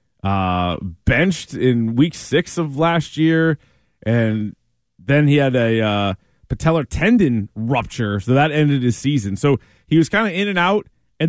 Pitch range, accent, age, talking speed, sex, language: 115-165 Hz, American, 30-49, 165 wpm, male, English